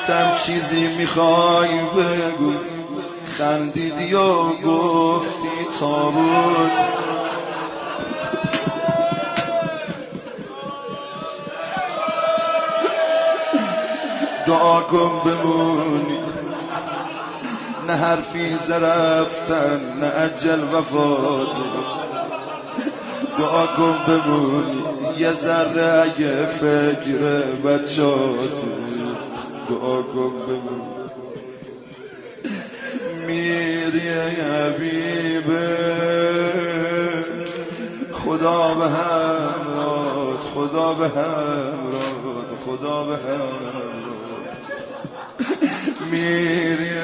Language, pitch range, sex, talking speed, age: Persian, 150-170 Hz, male, 40 wpm, 30-49